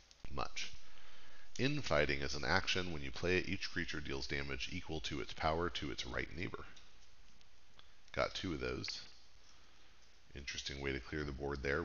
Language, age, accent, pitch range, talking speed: English, 40-59, American, 70-85 Hz, 160 wpm